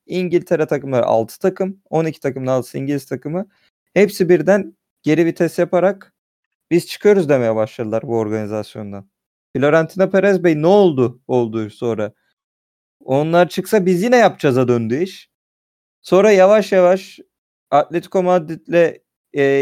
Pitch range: 130-185 Hz